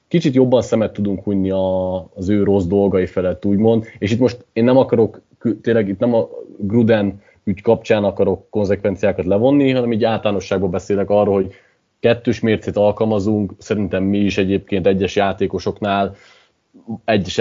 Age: 20-39